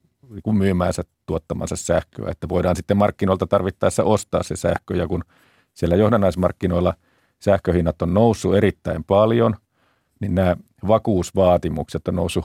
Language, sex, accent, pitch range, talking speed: Finnish, male, native, 90-100 Hz, 120 wpm